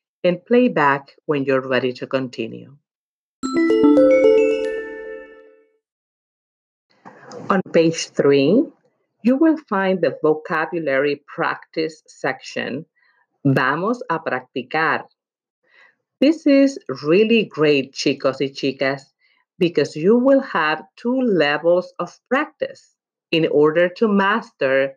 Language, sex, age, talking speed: English, female, 50-69, 95 wpm